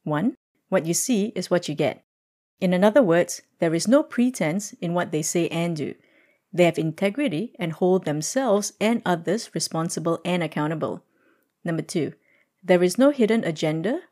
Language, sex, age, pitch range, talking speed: English, female, 30-49, 165-220 Hz, 165 wpm